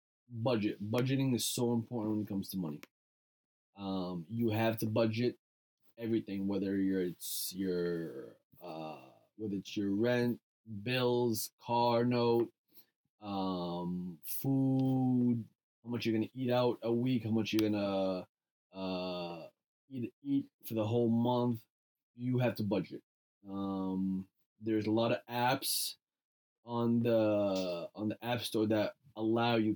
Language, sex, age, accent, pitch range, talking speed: English, male, 20-39, American, 100-120 Hz, 135 wpm